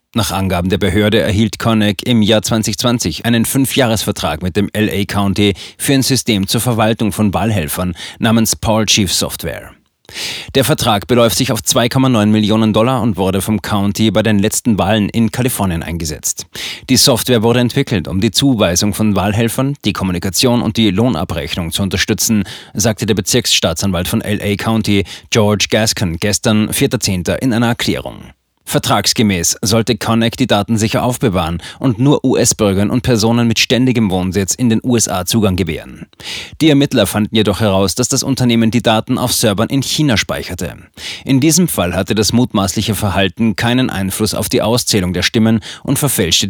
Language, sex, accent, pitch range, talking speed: German, male, German, 100-120 Hz, 160 wpm